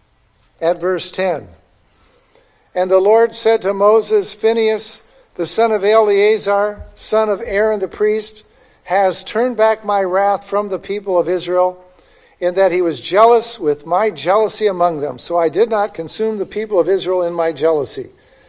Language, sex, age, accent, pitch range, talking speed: English, male, 60-79, American, 170-220 Hz, 165 wpm